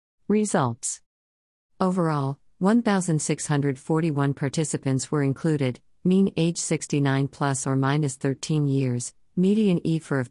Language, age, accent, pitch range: English, 50-69, American, 130-155 Hz